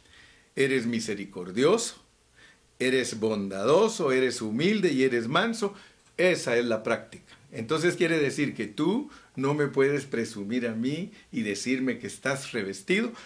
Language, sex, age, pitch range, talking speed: Spanish, male, 50-69, 105-125 Hz, 130 wpm